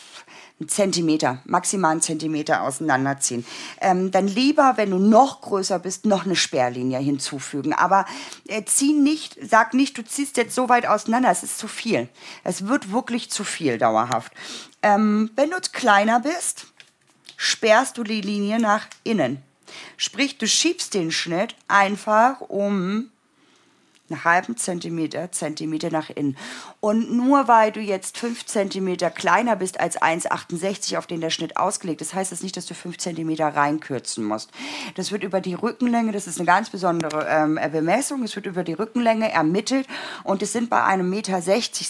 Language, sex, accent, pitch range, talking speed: German, female, German, 170-225 Hz, 165 wpm